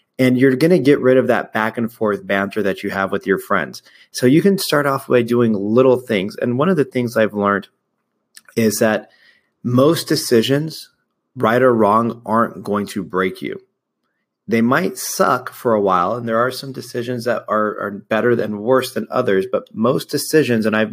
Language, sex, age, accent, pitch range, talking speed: English, male, 30-49, American, 100-120 Hz, 200 wpm